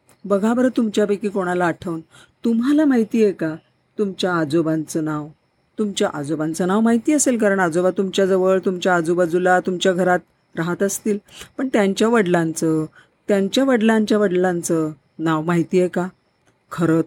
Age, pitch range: 40-59, 165-210 Hz